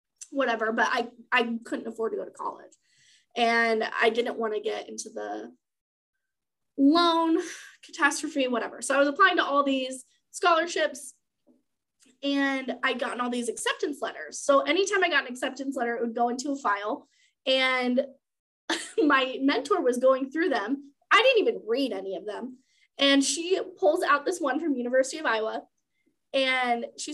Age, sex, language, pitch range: 20-39, female, English, 245-300 Hz